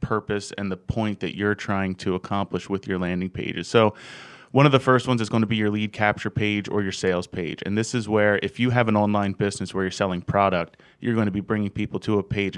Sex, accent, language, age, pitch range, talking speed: male, American, English, 20-39, 95-110 Hz, 260 wpm